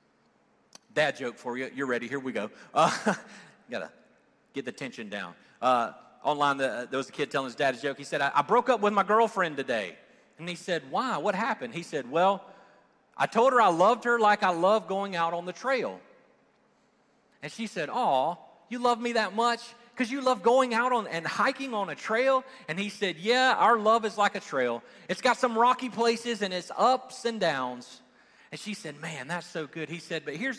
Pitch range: 150-235 Hz